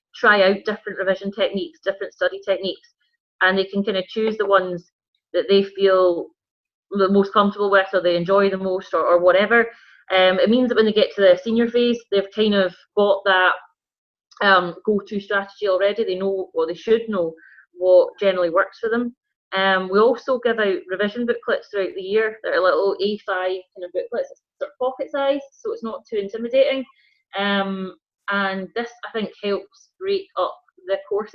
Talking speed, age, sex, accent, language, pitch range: 190 wpm, 30-49, female, British, English, 190-235 Hz